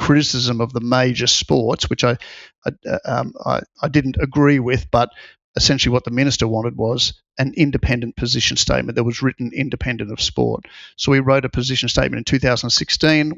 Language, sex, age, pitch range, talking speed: English, male, 50-69, 120-135 Hz, 175 wpm